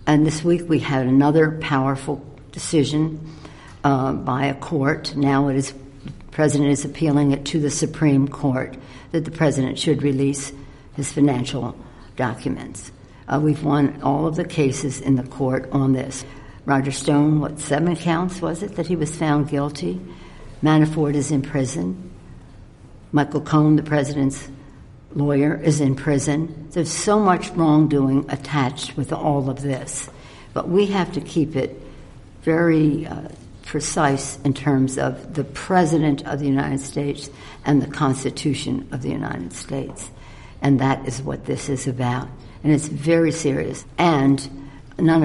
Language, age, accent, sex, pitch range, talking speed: English, 60-79, American, female, 135-155 Hz, 155 wpm